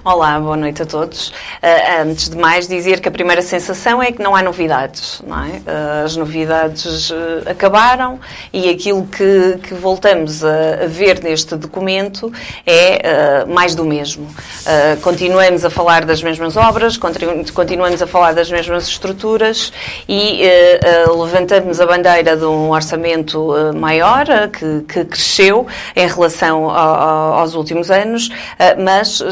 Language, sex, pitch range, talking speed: Portuguese, female, 165-190 Hz, 130 wpm